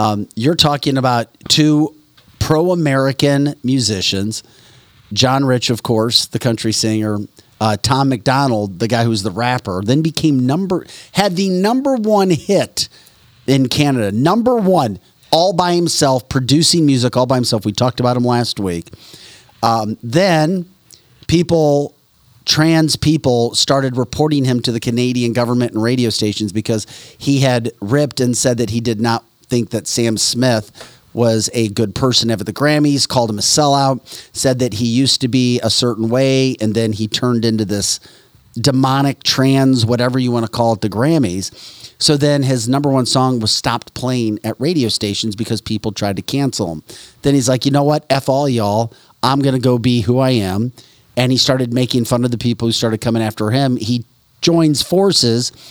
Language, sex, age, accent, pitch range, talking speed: English, male, 40-59, American, 115-140 Hz, 175 wpm